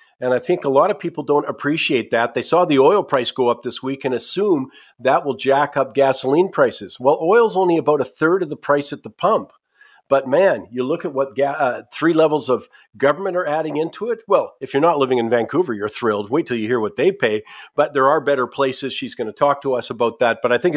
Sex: male